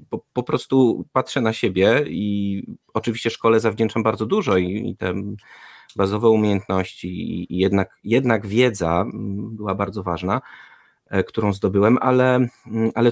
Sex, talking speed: male, 130 wpm